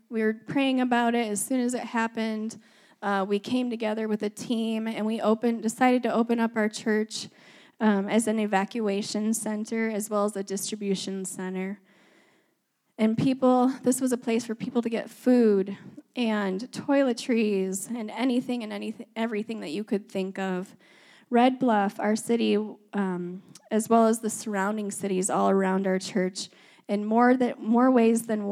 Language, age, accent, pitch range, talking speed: English, 10-29, American, 195-230 Hz, 170 wpm